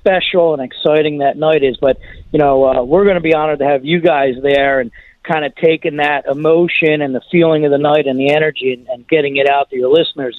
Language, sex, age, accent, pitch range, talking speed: English, male, 40-59, American, 140-170 Hz, 250 wpm